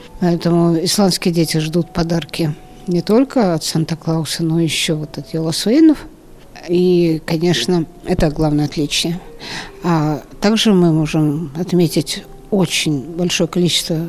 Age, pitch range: 50-69, 160-185 Hz